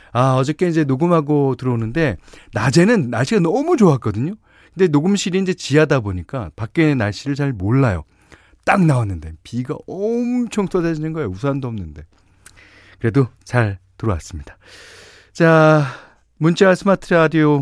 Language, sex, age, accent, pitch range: Korean, male, 40-59, native, 105-150 Hz